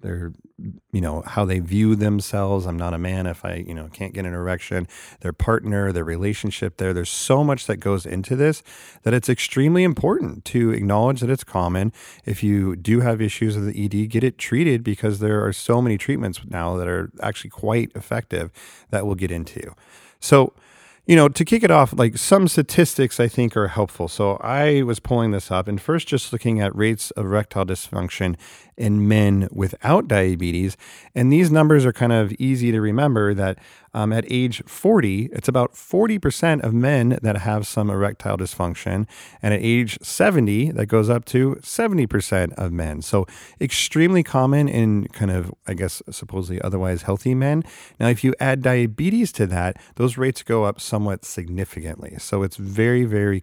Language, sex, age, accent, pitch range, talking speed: English, male, 40-59, American, 95-125 Hz, 185 wpm